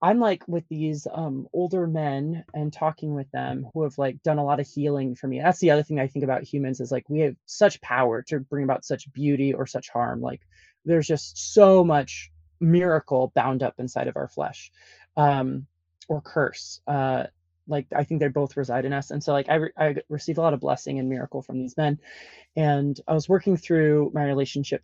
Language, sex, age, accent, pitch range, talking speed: English, male, 20-39, American, 135-160 Hz, 215 wpm